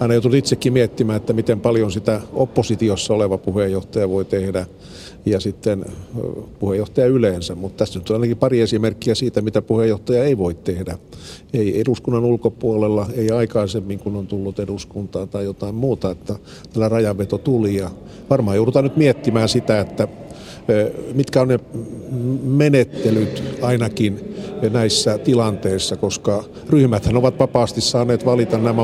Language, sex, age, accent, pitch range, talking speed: Finnish, male, 50-69, native, 105-125 Hz, 140 wpm